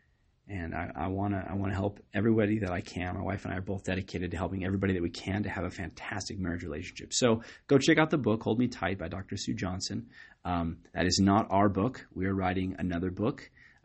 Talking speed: 245 wpm